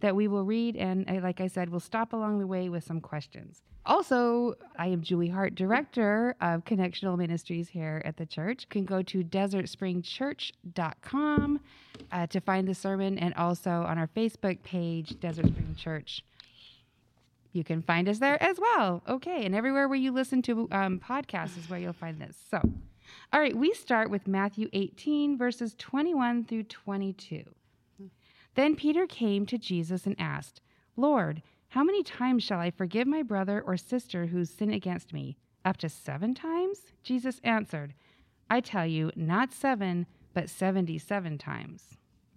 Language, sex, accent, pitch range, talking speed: English, female, American, 170-235 Hz, 165 wpm